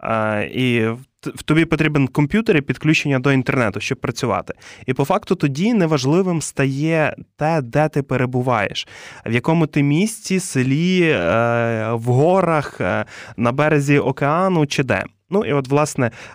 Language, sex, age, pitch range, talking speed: Ukrainian, male, 20-39, 115-145 Hz, 135 wpm